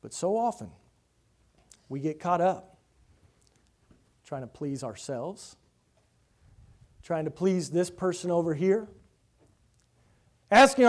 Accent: American